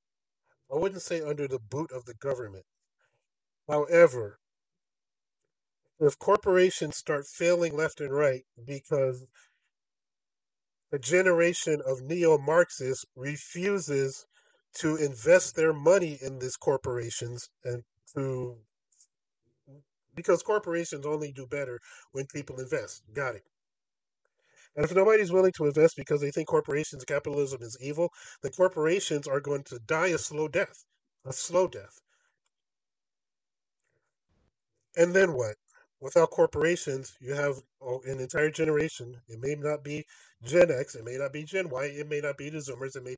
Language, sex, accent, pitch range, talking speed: English, male, American, 130-170 Hz, 140 wpm